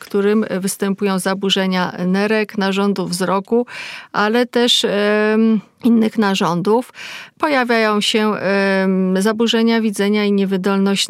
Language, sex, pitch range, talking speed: Polish, female, 195-220 Hz, 90 wpm